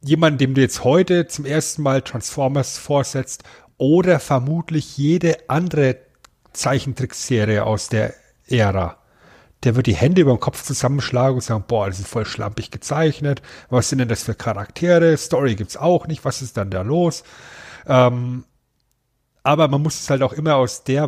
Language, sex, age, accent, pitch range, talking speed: German, male, 40-59, German, 125-150 Hz, 170 wpm